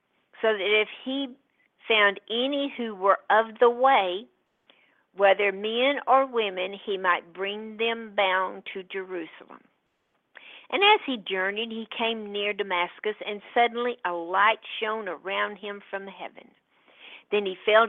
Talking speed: 140 wpm